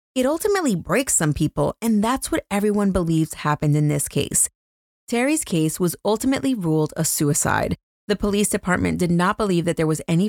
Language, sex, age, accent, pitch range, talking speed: English, female, 30-49, American, 155-215 Hz, 180 wpm